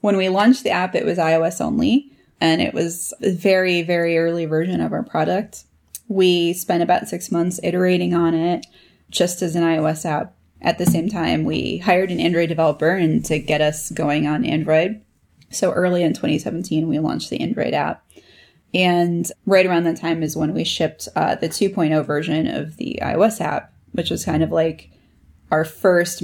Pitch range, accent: 155-180 Hz, American